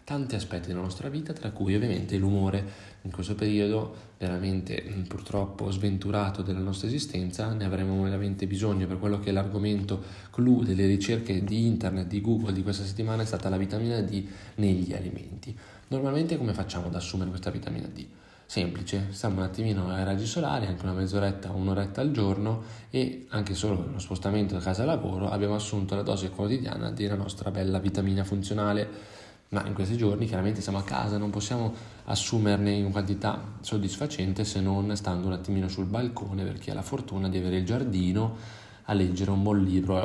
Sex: male